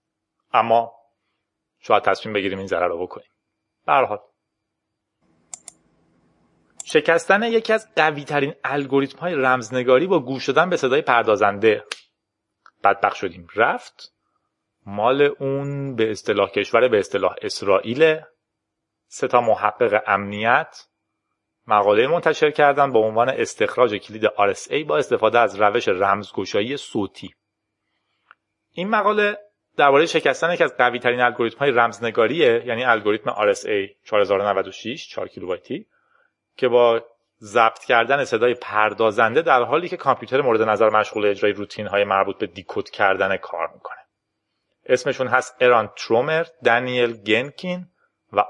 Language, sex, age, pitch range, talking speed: Persian, male, 30-49, 105-165 Hz, 120 wpm